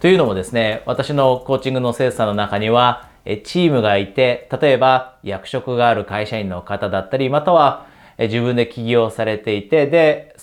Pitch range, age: 105-145 Hz, 30-49